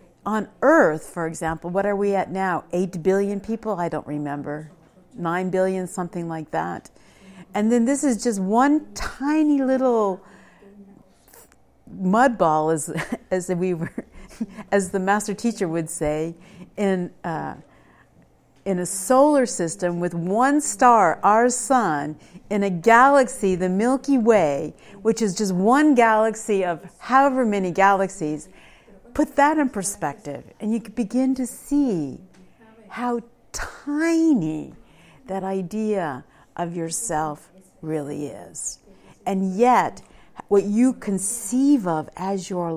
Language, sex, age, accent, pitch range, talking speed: English, female, 50-69, American, 175-240 Hz, 130 wpm